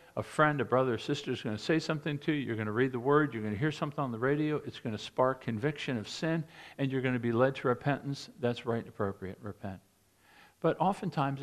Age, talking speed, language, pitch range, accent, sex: 50-69, 255 wpm, English, 115-170 Hz, American, male